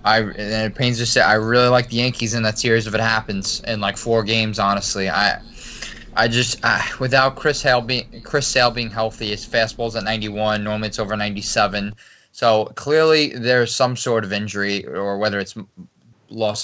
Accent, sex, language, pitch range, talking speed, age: American, male, English, 105-125 Hz, 185 wpm, 20-39